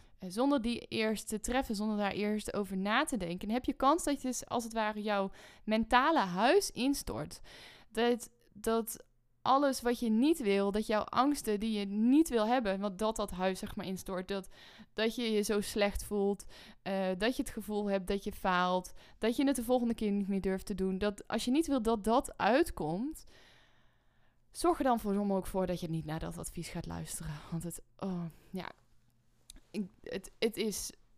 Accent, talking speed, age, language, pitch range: Dutch, 200 wpm, 20-39, Dutch, 190-230 Hz